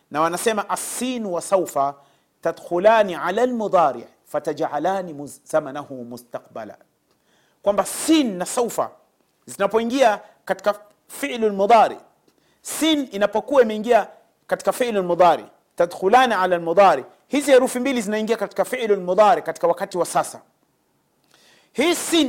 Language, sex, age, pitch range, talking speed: Swahili, male, 40-59, 175-235 Hz, 95 wpm